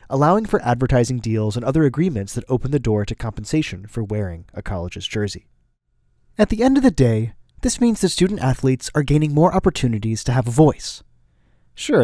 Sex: male